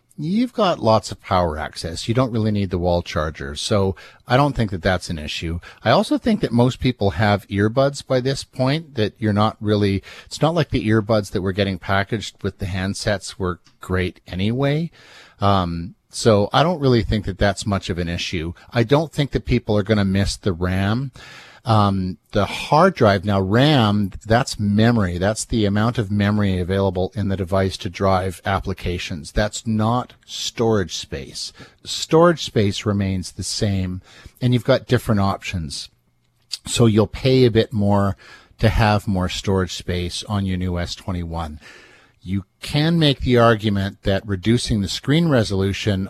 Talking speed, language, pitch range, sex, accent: 175 wpm, English, 95-115 Hz, male, American